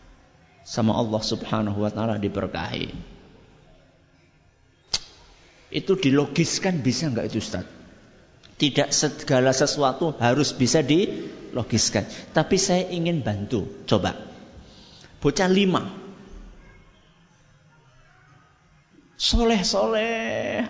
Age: 50-69